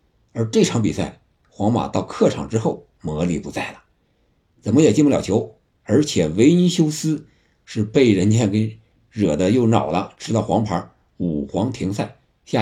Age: 50-69